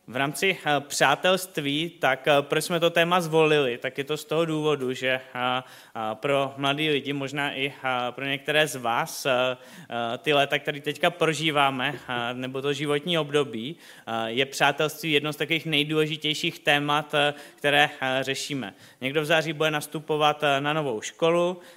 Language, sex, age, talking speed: Czech, male, 20-39, 140 wpm